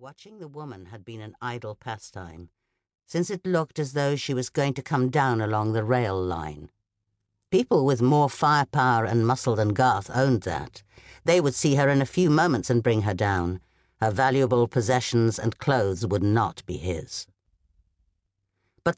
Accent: British